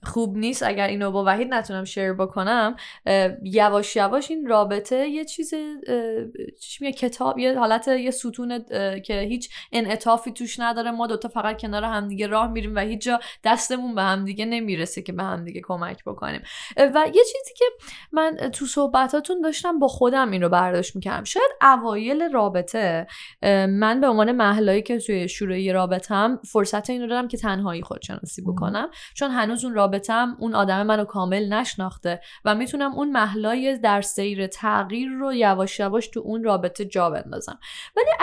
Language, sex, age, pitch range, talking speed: Persian, female, 10-29, 200-275 Hz, 170 wpm